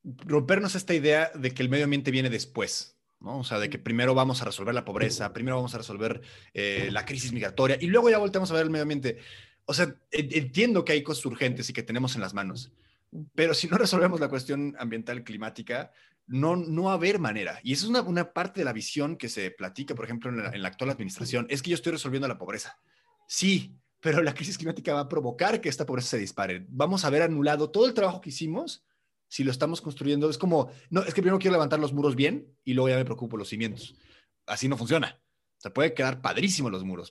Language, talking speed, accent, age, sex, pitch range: English, 235 wpm, Mexican, 30-49, male, 120-160 Hz